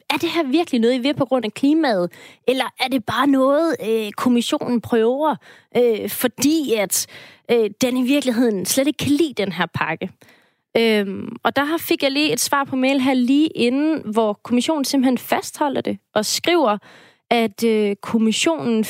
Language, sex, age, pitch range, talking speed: Danish, female, 30-49, 210-270 Hz, 180 wpm